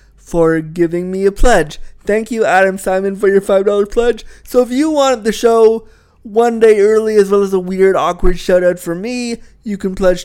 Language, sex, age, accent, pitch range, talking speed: English, male, 30-49, American, 150-200 Hz, 210 wpm